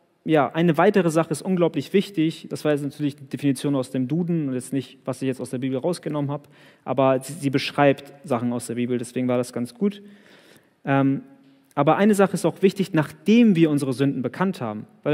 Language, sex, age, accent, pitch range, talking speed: German, male, 30-49, German, 130-160 Hz, 215 wpm